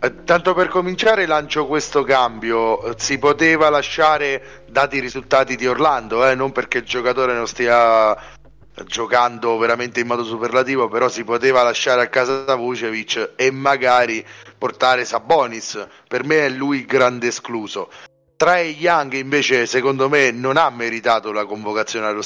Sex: male